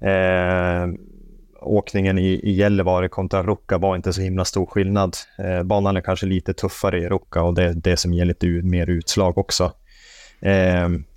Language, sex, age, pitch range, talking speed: Swedish, male, 30-49, 90-100 Hz, 170 wpm